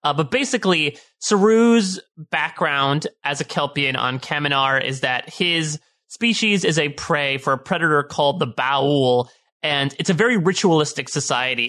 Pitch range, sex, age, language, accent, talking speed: 145-200 Hz, male, 30-49, English, American, 150 wpm